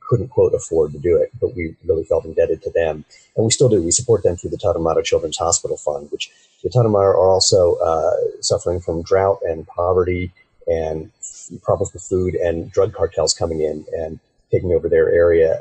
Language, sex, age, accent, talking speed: English, male, 40-59, American, 195 wpm